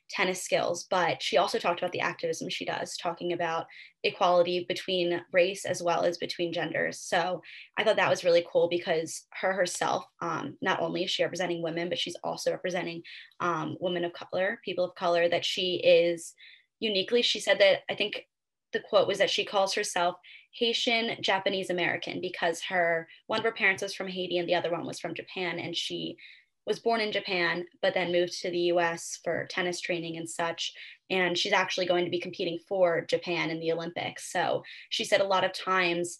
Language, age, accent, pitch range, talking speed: English, 10-29, American, 170-195 Hz, 200 wpm